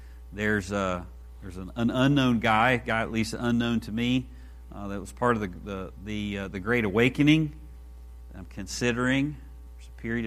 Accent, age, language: American, 50-69, English